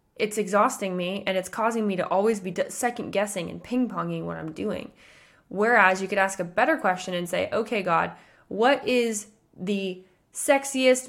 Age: 20-39